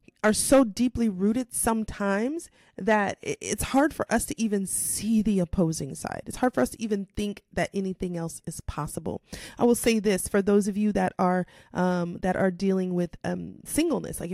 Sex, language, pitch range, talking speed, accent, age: female, English, 190-230 Hz, 195 wpm, American, 30-49